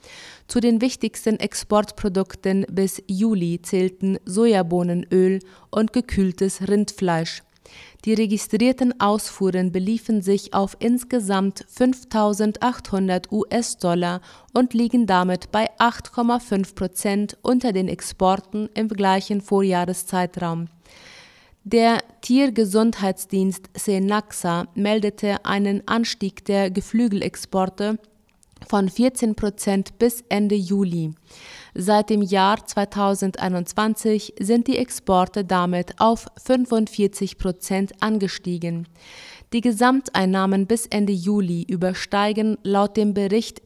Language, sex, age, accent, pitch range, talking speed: German, female, 30-49, German, 190-220 Hz, 90 wpm